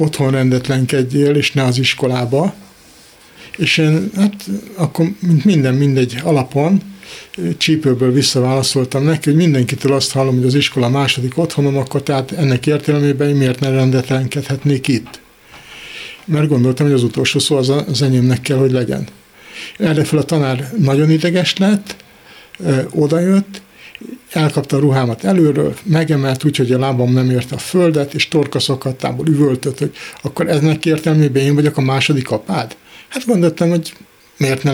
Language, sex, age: Hungarian, male, 60-79